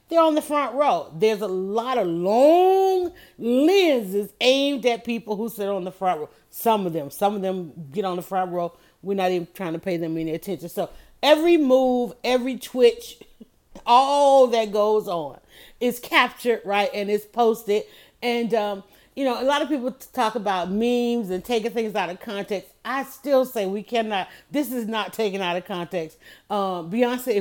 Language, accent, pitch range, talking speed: English, American, 185-245 Hz, 190 wpm